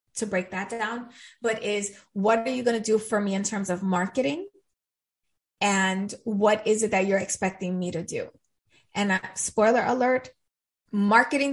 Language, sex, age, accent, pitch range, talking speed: English, female, 20-39, American, 200-260 Hz, 170 wpm